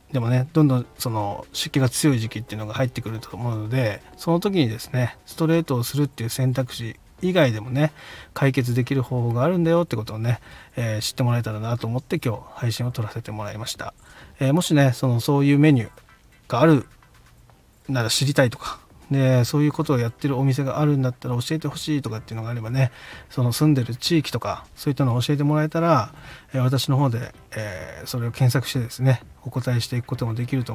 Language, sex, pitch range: Japanese, male, 115-140 Hz